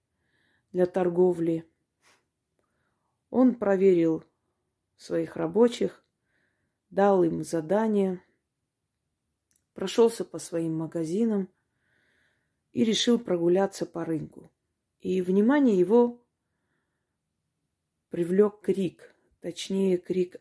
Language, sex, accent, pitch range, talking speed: Russian, female, native, 170-210 Hz, 75 wpm